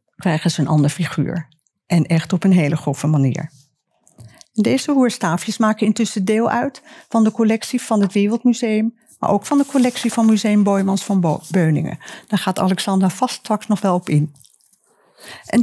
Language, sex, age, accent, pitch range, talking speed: Dutch, female, 50-69, Dutch, 175-230 Hz, 170 wpm